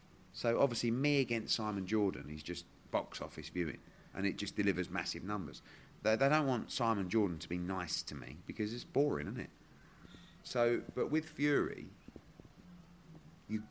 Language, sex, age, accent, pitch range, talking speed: English, male, 30-49, British, 80-105 Hz, 165 wpm